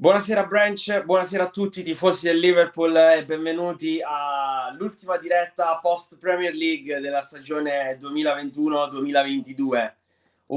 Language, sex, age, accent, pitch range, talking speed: Italian, male, 20-39, native, 120-150 Hz, 110 wpm